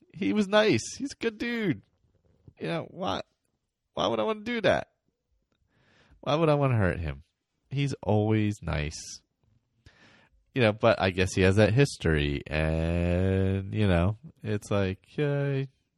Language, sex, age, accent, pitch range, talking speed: English, male, 30-49, American, 80-135 Hz, 160 wpm